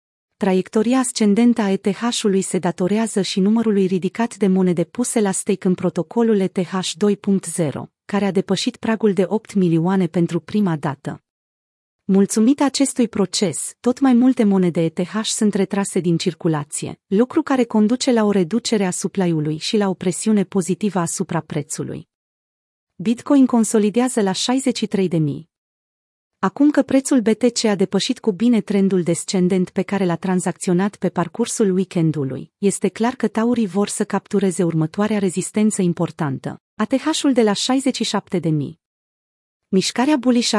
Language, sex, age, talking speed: Romanian, female, 30-49, 140 wpm